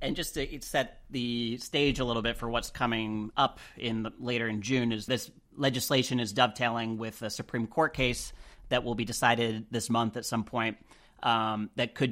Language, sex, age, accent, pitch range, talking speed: English, male, 30-49, American, 110-125 Hz, 200 wpm